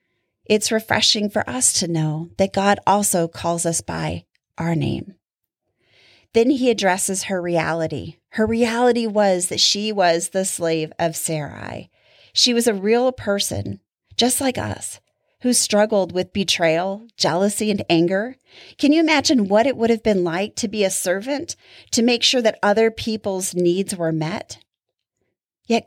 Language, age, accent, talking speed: English, 30-49, American, 155 wpm